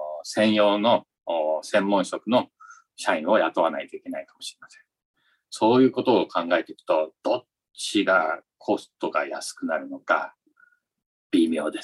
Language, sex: Japanese, male